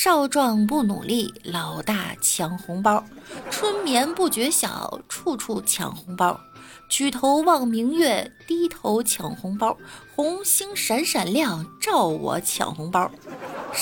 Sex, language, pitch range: female, Chinese, 195-315 Hz